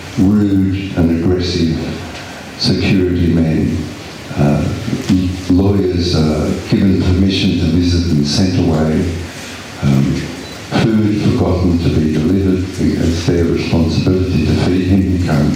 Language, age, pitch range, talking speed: English, 60-79, 80-95 Hz, 110 wpm